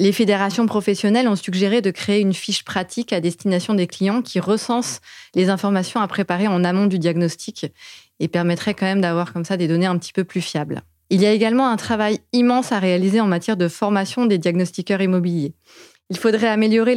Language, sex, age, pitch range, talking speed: French, female, 20-39, 180-215 Hz, 200 wpm